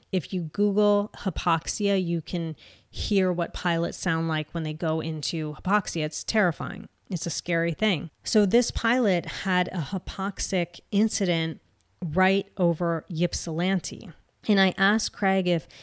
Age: 30-49